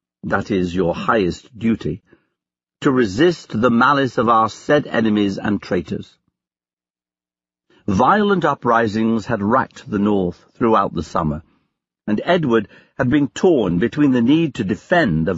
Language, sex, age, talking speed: English, male, 60-79, 135 wpm